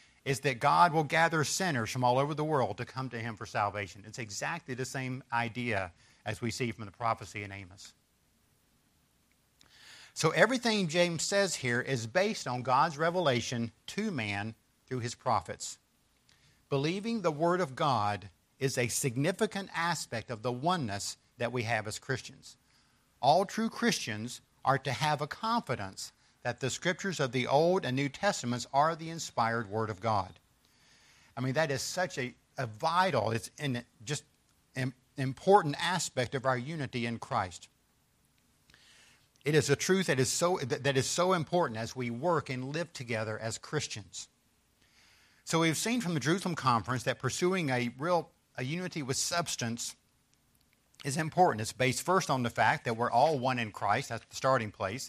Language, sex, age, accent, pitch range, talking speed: English, male, 50-69, American, 115-165 Hz, 170 wpm